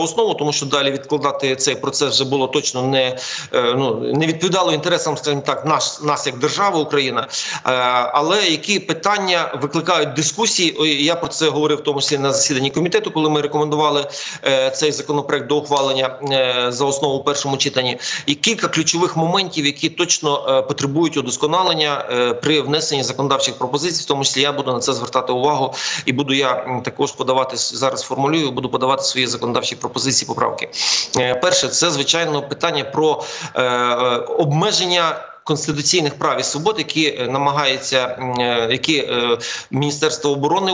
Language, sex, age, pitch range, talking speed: Ukrainian, male, 40-59, 135-160 Hz, 145 wpm